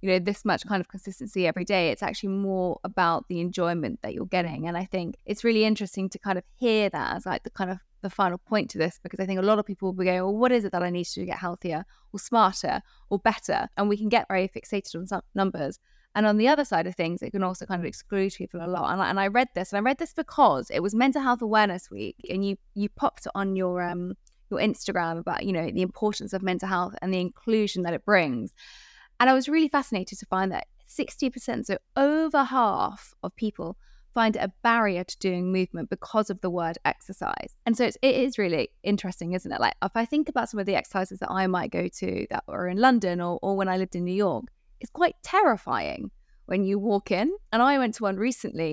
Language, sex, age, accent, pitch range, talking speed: English, female, 20-39, British, 185-225 Hz, 250 wpm